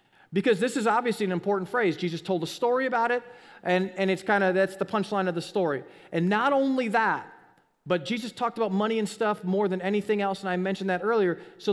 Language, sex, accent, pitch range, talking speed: English, male, American, 175-225 Hz, 225 wpm